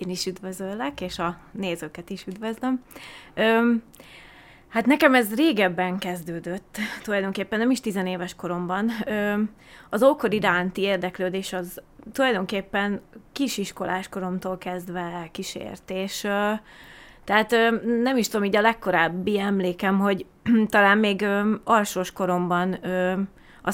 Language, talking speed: Hungarian, 125 wpm